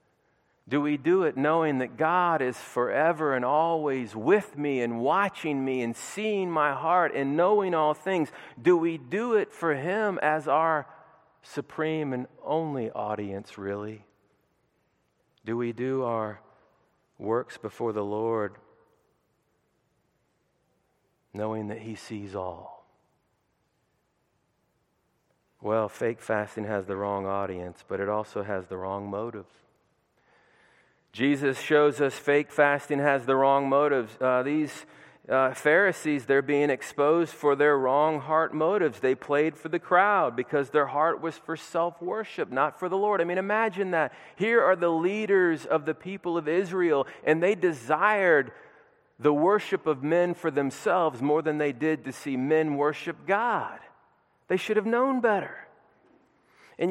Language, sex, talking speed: English, male, 145 wpm